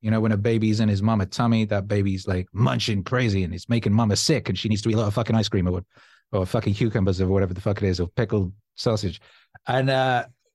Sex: male